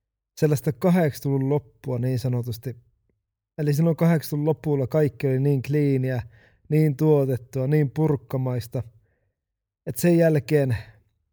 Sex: male